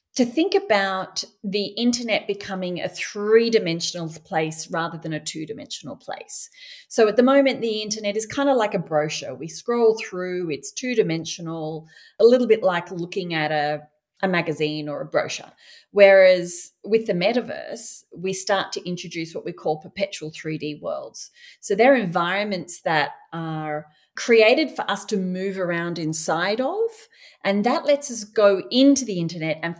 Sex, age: female, 30-49